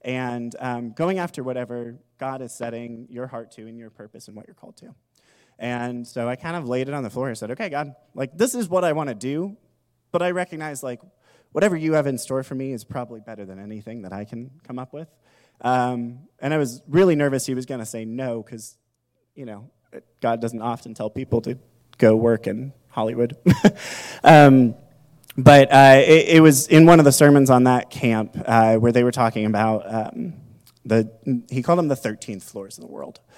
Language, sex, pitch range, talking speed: English, male, 115-135 Hz, 210 wpm